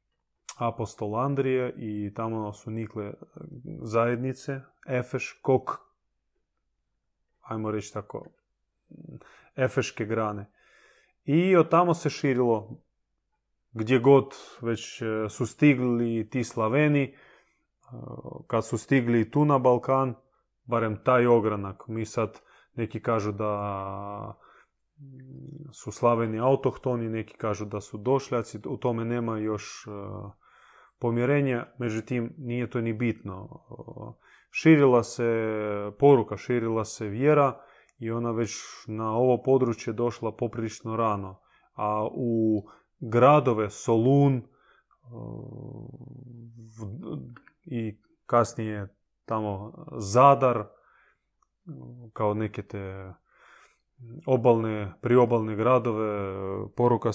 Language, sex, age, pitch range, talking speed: Croatian, male, 20-39, 110-130 Hz, 90 wpm